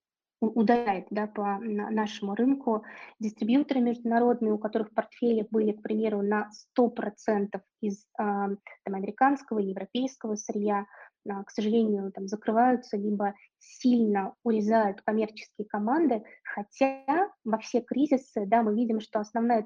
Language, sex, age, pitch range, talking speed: Russian, female, 20-39, 210-235 Hz, 120 wpm